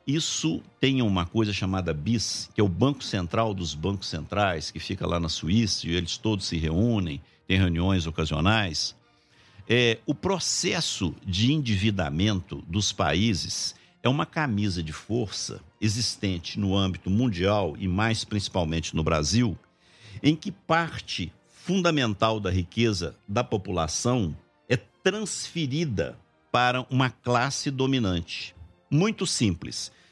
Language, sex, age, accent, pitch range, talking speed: Portuguese, male, 60-79, Brazilian, 95-145 Hz, 125 wpm